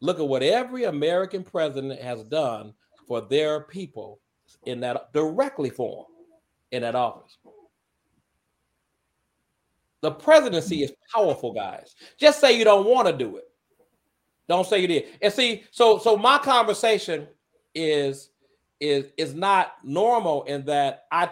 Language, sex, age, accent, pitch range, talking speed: English, male, 40-59, American, 150-240 Hz, 140 wpm